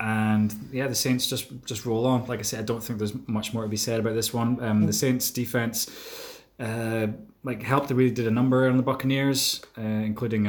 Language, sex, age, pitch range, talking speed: English, male, 20-39, 105-135 Hz, 230 wpm